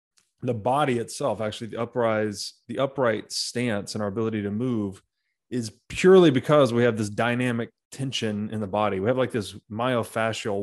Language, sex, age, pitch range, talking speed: English, male, 20-39, 110-130 Hz, 170 wpm